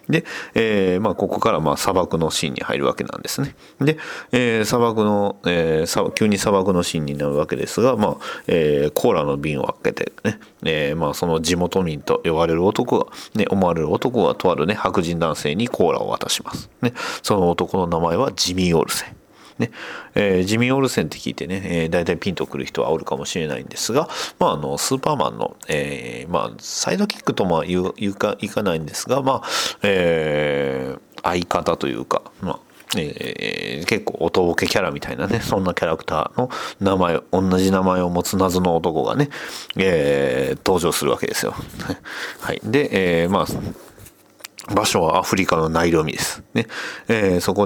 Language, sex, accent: Japanese, male, native